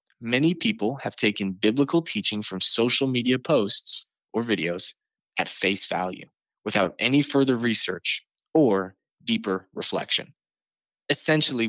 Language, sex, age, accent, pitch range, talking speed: English, male, 20-39, American, 95-120 Hz, 120 wpm